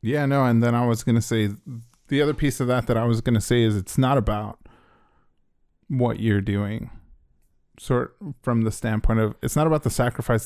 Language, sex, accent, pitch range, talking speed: English, male, American, 110-125 Hz, 210 wpm